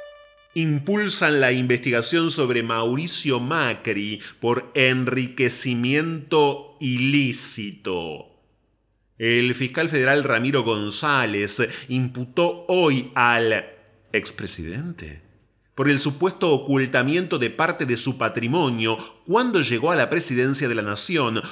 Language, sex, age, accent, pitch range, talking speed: Spanish, male, 30-49, Argentinian, 110-145 Hz, 100 wpm